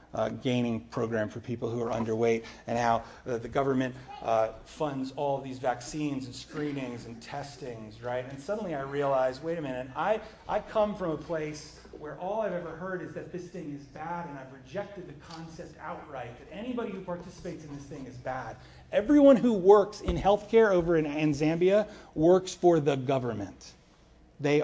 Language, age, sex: English, 40-59, male